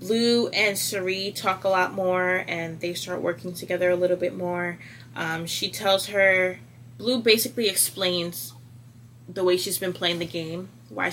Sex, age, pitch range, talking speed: female, 20-39, 125-185 Hz, 165 wpm